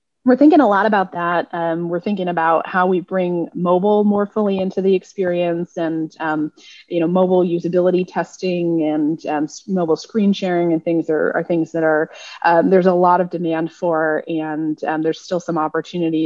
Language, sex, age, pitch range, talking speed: English, female, 20-39, 160-225 Hz, 190 wpm